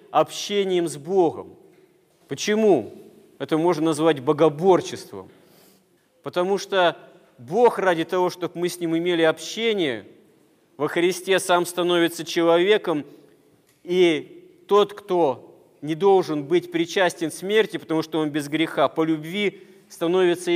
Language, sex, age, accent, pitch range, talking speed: Russian, male, 40-59, native, 160-190 Hz, 115 wpm